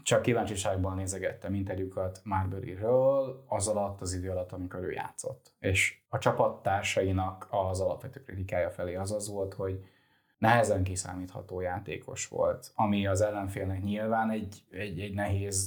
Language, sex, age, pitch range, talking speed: Hungarian, male, 20-39, 95-115 Hz, 140 wpm